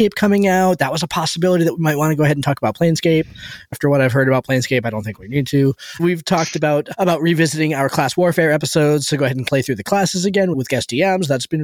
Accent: American